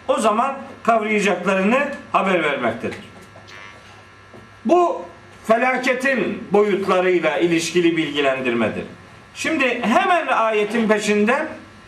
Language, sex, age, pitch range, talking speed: Turkish, male, 50-69, 190-240 Hz, 70 wpm